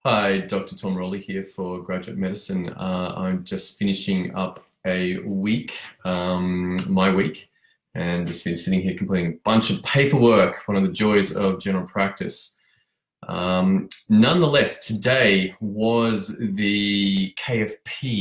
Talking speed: 135 wpm